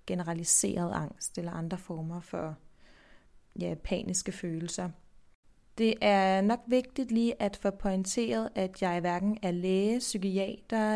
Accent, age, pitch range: native, 30-49, 185-220 Hz